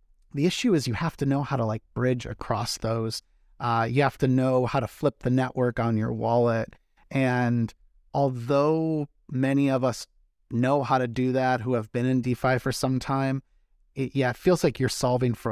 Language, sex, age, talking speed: English, male, 30-49, 195 wpm